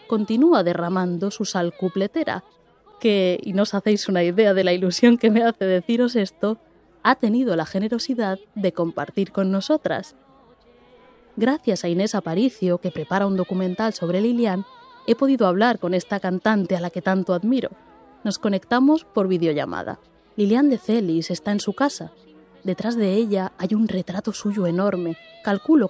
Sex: female